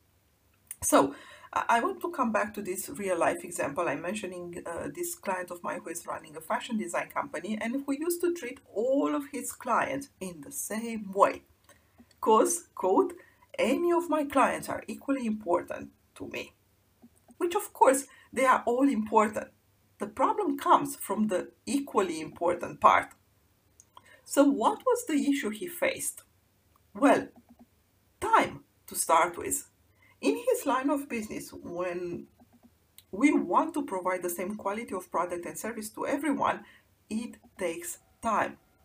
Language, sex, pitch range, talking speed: English, female, 190-280 Hz, 150 wpm